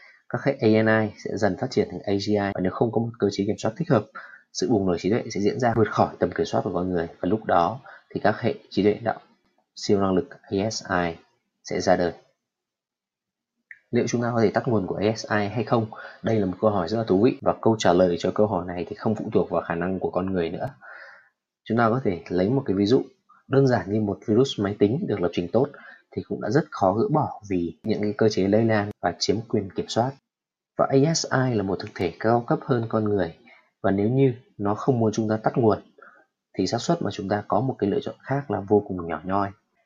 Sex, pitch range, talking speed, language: male, 100-115 Hz, 250 wpm, Vietnamese